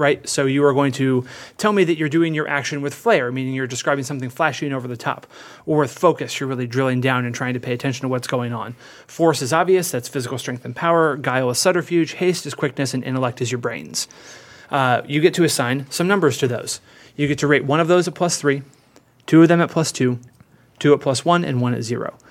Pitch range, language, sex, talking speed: 130-150 Hz, English, male, 245 wpm